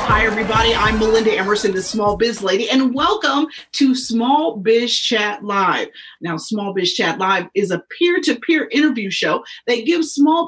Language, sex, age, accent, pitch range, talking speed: English, female, 40-59, American, 195-265 Hz, 165 wpm